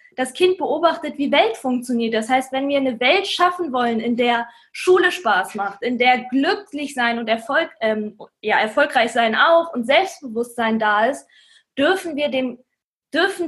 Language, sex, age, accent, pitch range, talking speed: German, female, 20-39, German, 245-330 Hz, 145 wpm